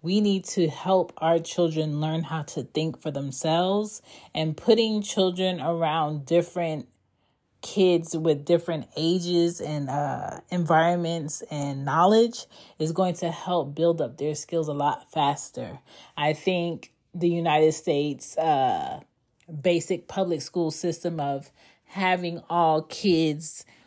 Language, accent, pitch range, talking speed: English, American, 150-185 Hz, 130 wpm